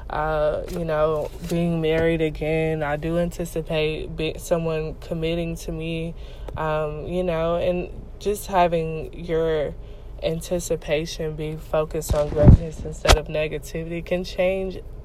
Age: 20-39